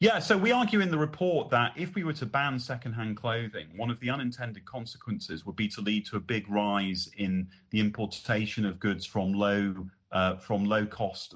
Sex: male